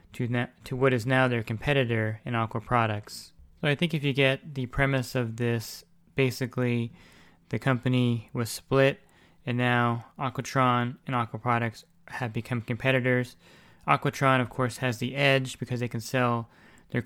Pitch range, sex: 115-130 Hz, male